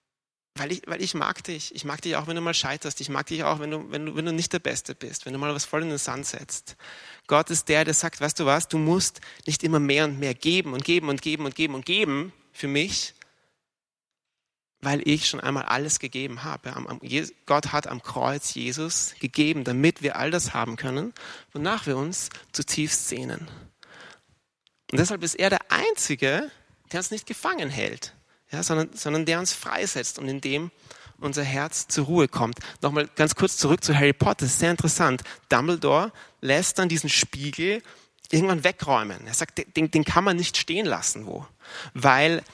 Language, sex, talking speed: German, male, 205 wpm